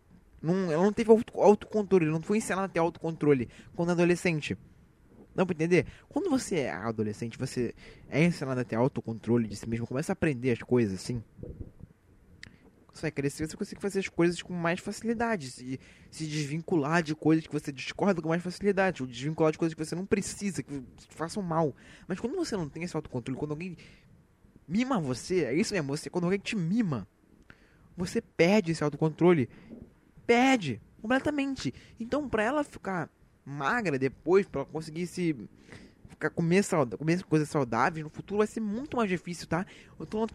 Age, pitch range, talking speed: 20-39, 135-195 Hz, 180 wpm